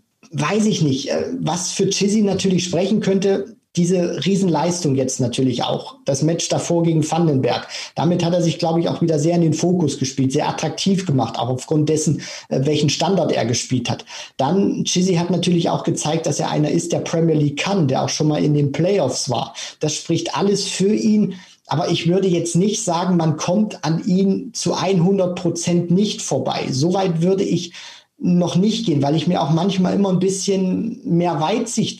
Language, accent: German, German